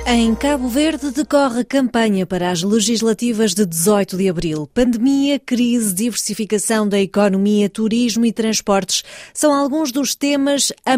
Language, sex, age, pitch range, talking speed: Portuguese, female, 20-39, 195-255 Hz, 140 wpm